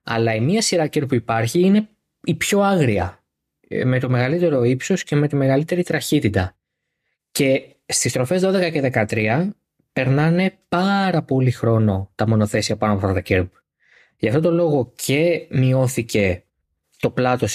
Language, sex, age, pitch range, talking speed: Greek, male, 20-39, 110-145 Hz, 150 wpm